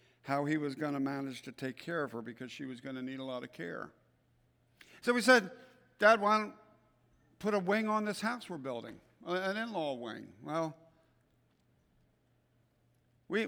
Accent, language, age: American, English, 60-79